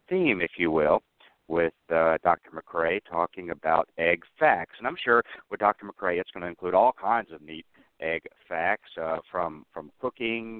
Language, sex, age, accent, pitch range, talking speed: English, male, 60-79, American, 105-140 Hz, 180 wpm